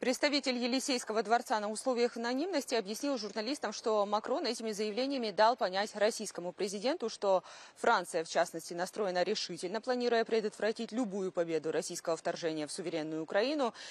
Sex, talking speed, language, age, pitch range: female, 135 wpm, Russian, 20-39, 175-230 Hz